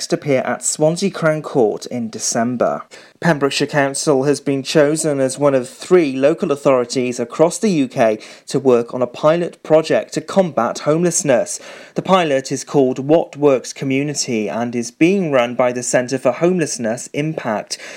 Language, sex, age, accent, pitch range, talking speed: English, male, 30-49, British, 130-165 Hz, 155 wpm